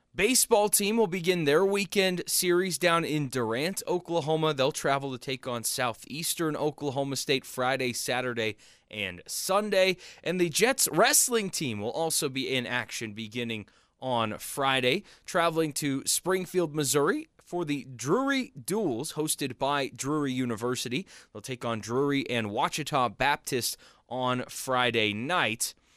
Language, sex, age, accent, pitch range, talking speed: English, male, 20-39, American, 125-170 Hz, 135 wpm